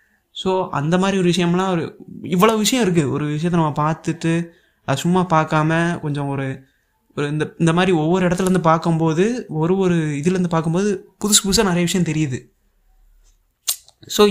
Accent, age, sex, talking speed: native, 20-39, male, 145 wpm